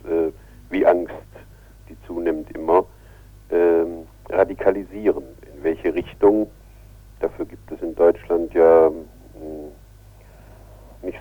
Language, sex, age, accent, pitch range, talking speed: German, male, 60-79, German, 80-105 Hz, 85 wpm